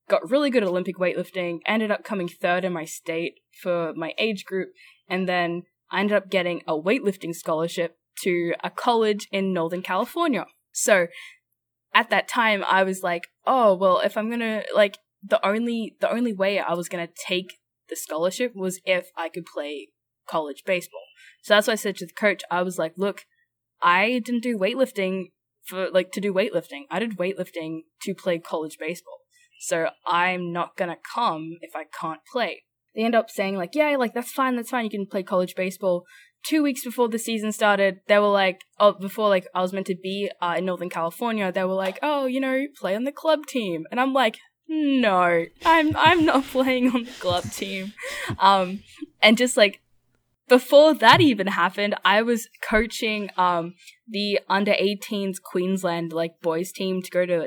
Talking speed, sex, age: 195 wpm, female, 10-29